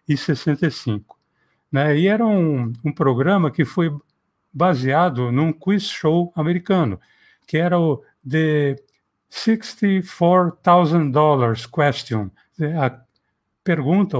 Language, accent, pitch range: Portuguese, Brazilian, 130-175 Hz